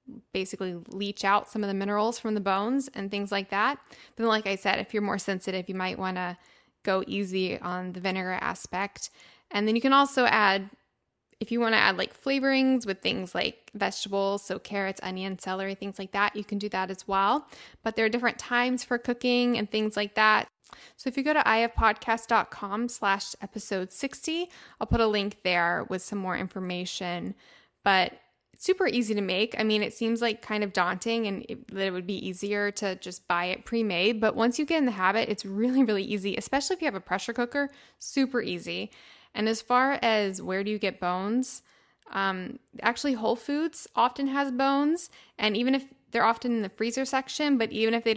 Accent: American